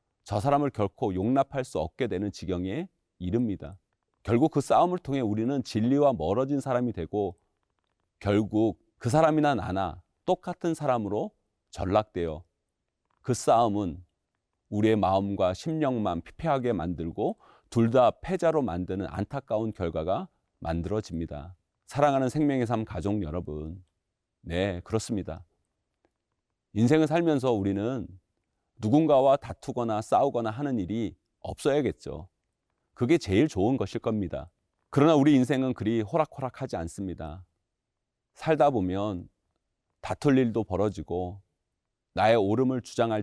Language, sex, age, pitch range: Korean, male, 40-59, 90-130 Hz